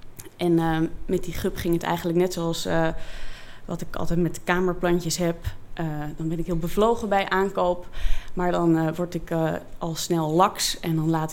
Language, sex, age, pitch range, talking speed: Dutch, female, 20-39, 155-190 Hz, 195 wpm